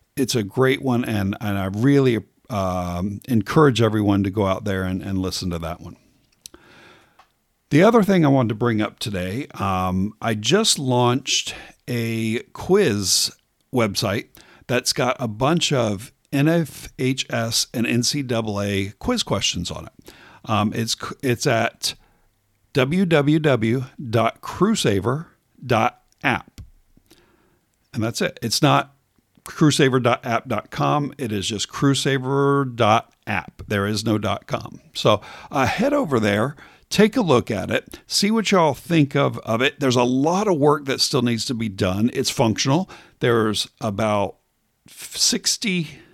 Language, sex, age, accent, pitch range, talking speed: English, male, 50-69, American, 105-140 Hz, 130 wpm